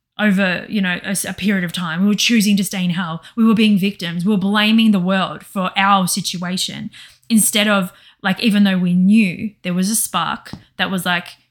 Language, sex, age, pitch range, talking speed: English, female, 20-39, 180-225 Hz, 215 wpm